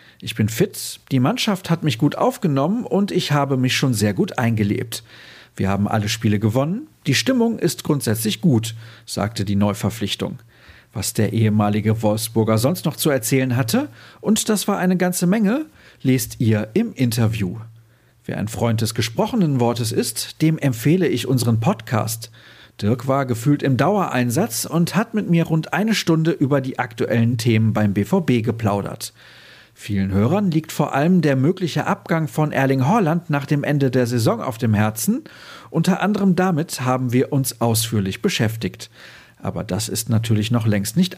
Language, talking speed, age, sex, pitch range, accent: German, 165 wpm, 40-59, male, 110-160 Hz, German